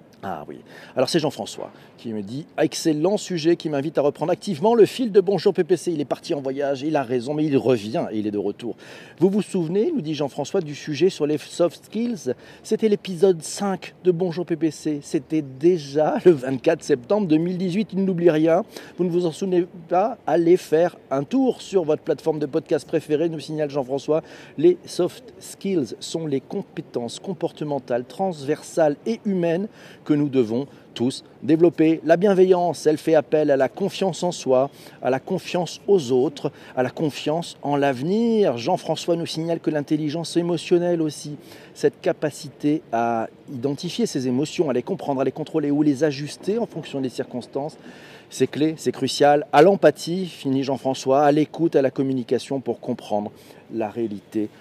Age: 40-59